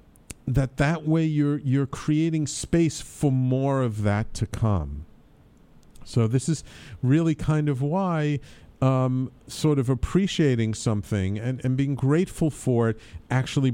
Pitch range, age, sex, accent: 110-145 Hz, 50-69, male, American